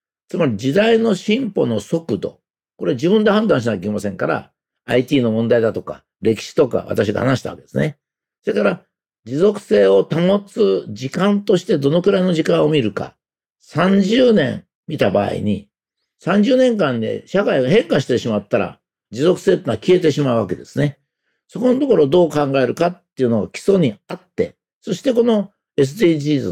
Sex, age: male, 50-69